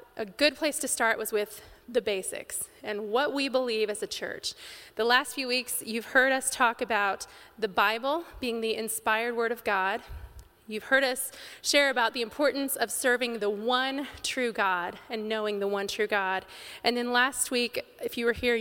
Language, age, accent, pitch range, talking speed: English, 30-49, American, 210-250 Hz, 195 wpm